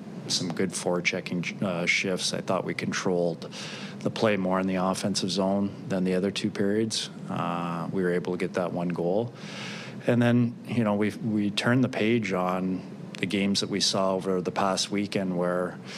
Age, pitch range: 30-49, 90-105 Hz